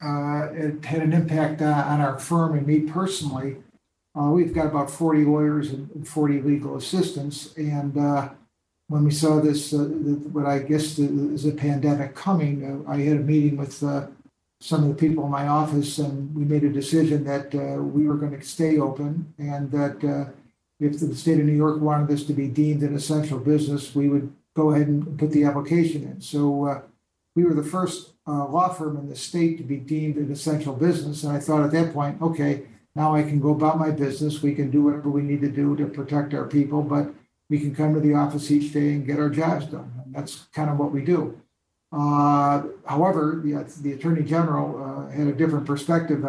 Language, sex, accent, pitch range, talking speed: English, male, American, 145-155 Hz, 215 wpm